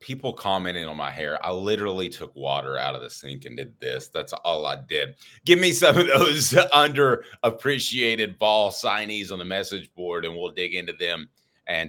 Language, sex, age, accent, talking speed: English, male, 30-49, American, 190 wpm